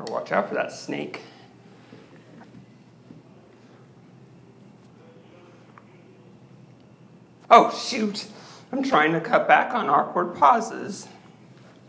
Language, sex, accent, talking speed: English, male, American, 75 wpm